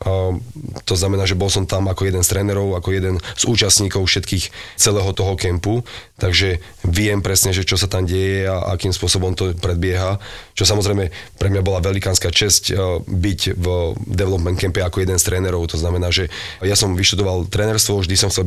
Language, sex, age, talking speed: Slovak, male, 30-49, 180 wpm